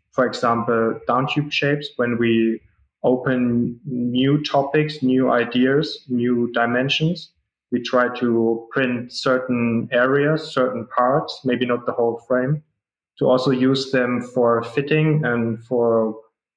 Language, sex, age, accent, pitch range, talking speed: English, male, 20-39, German, 120-140 Hz, 125 wpm